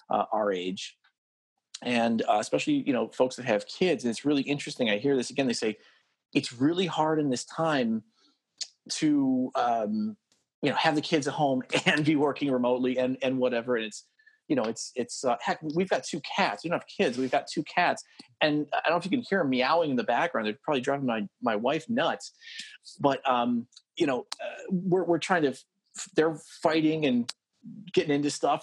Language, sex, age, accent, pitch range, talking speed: English, male, 30-49, American, 130-185 Hz, 210 wpm